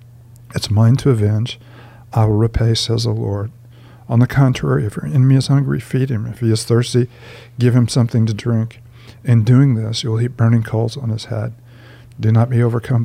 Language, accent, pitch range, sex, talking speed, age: English, American, 115-125 Hz, male, 200 wpm, 50-69